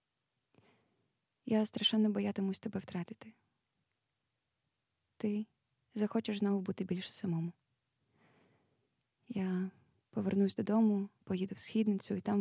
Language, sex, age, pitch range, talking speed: Ukrainian, female, 20-39, 170-215 Hz, 90 wpm